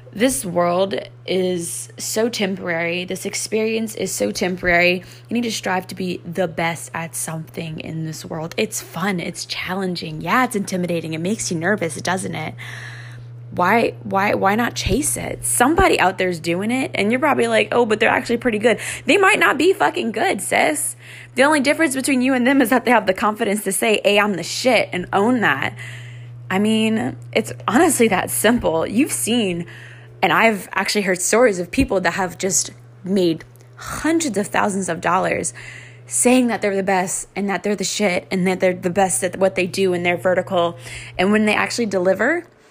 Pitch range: 165-225 Hz